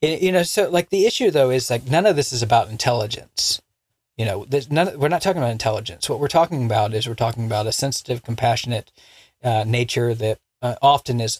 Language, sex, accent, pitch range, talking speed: English, male, American, 115-145 Hz, 215 wpm